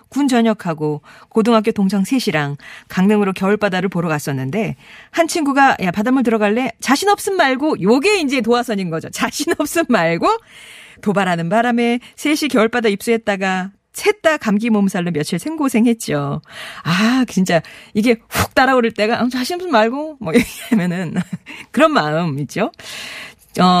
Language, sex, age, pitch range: Korean, female, 40-59, 180-265 Hz